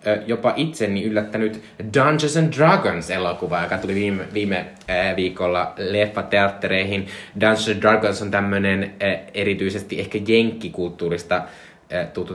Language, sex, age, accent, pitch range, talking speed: Finnish, male, 20-39, native, 90-115 Hz, 110 wpm